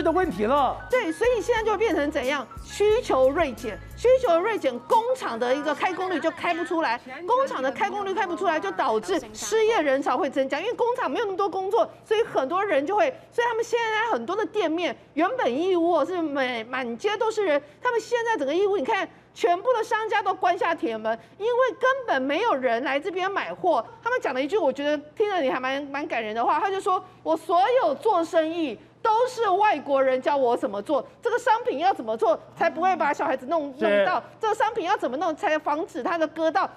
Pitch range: 300-435 Hz